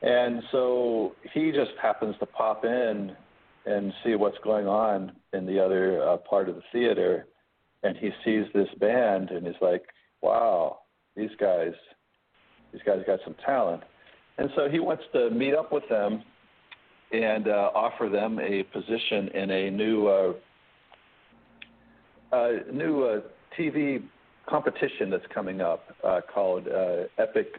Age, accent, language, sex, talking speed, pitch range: 50-69, American, English, male, 150 wpm, 100-120 Hz